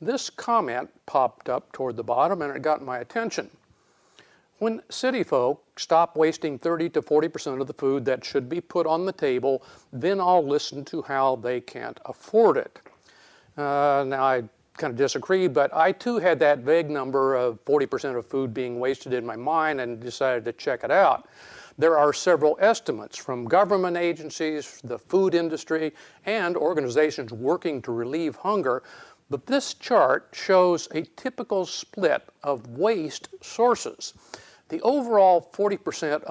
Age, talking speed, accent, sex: 50-69, 160 wpm, American, male